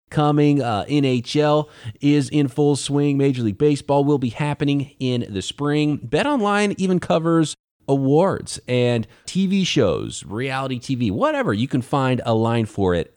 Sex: male